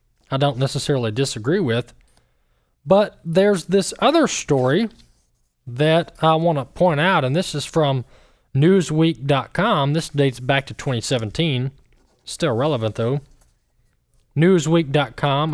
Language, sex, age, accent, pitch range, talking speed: English, male, 20-39, American, 125-165 Hz, 115 wpm